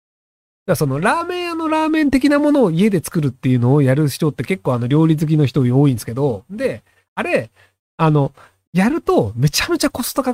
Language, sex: Japanese, male